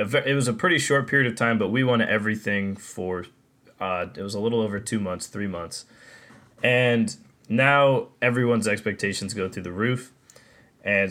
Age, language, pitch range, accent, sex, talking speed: 20-39, English, 105-130 Hz, American, male, 175 wpm